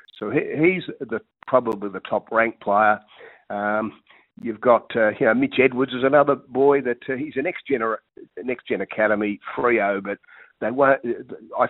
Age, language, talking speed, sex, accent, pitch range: 50-69, English, 170 wpm, male, Australian, 105-125 Hz